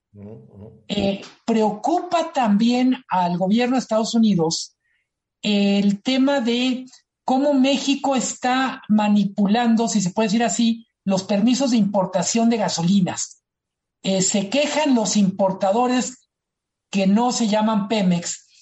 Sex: male